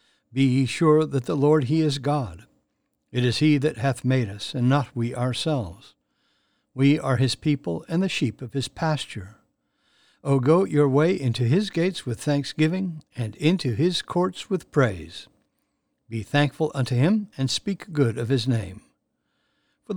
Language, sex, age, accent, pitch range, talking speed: English, male, 60-79, American, 125-165 Hz, 170 wpm